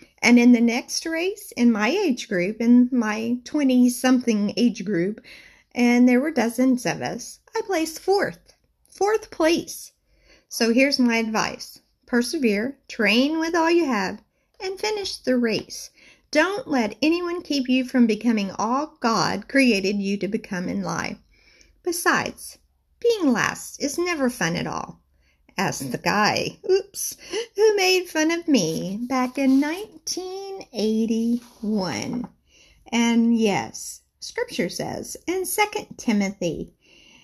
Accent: American